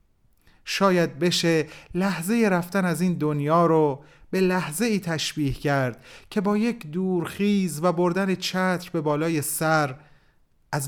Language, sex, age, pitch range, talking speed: Persian, male, 30-49, 130-175 Hz, 125 wpm